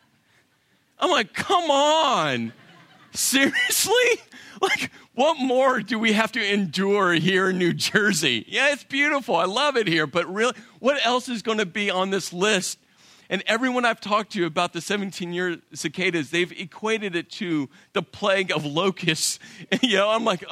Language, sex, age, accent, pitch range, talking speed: English, male, 40-59, American, 165-215 Hz, 165 wpm